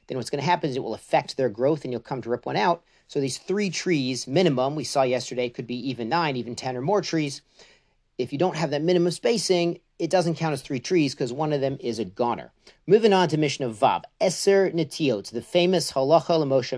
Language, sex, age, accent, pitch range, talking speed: English, male, 40-59, American, 125-165 Hz, 245 wpm